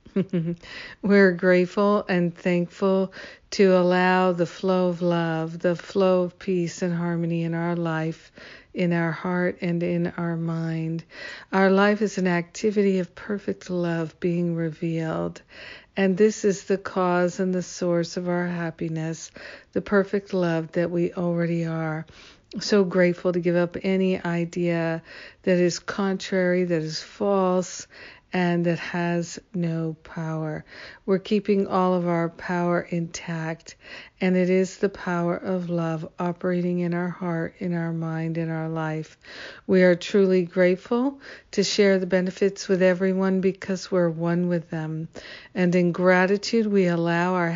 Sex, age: female, 60-79